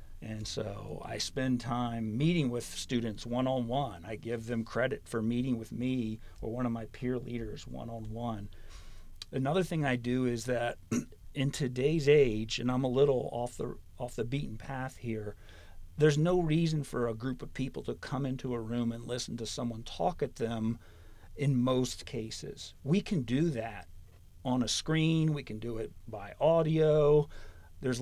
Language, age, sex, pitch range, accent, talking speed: English, 50-69, male, 110-135 Hz, American, 175 wpm